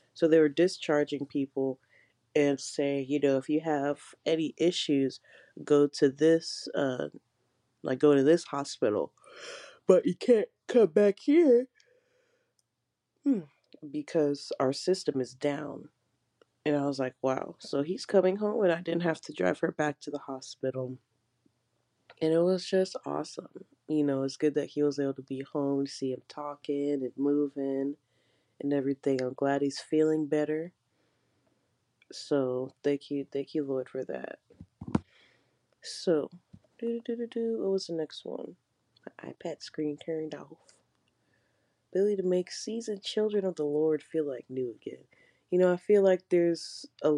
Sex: female